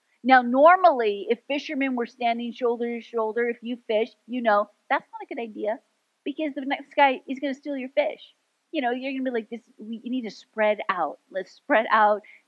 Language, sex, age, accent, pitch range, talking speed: English, female, 40-59, American, 215-280 Hz, 220 wpm